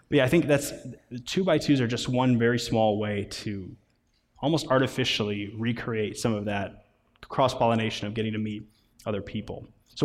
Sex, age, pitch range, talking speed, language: male, 20-39, 110-130 Hz, 160 wpm, English